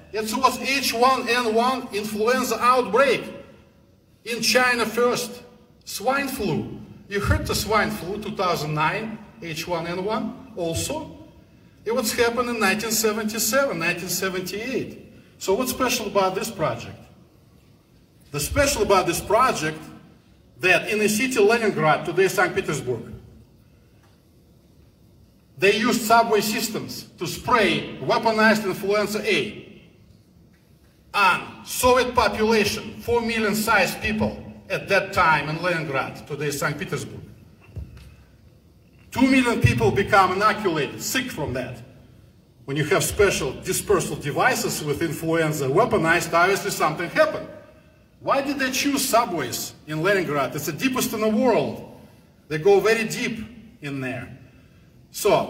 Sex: male